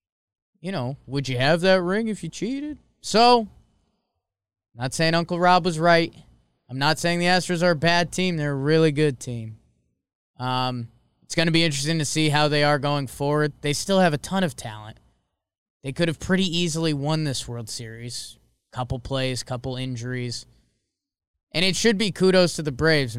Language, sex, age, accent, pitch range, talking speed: English, male, 20-39, American, 125-170 Hz, 185 wpm